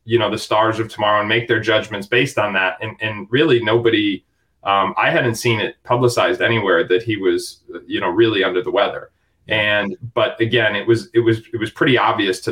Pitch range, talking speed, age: 105-125 Hz, 215 wpm, 20-39